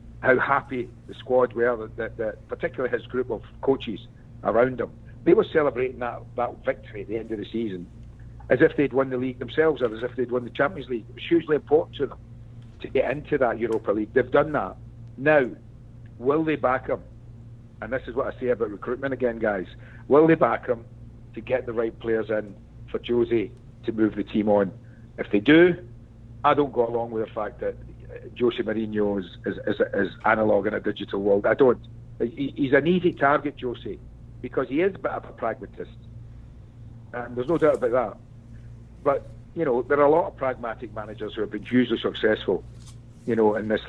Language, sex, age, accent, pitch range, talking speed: English, male, 60-79, British, 115-125 Hz, 210 wpm